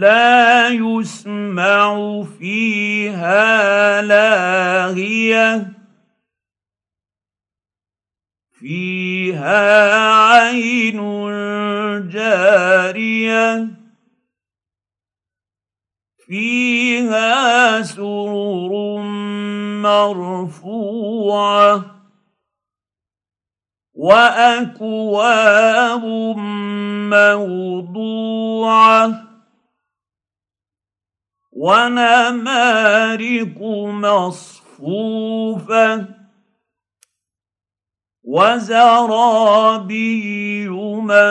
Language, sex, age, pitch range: Arabic, male, 50-69, 180-235 Hz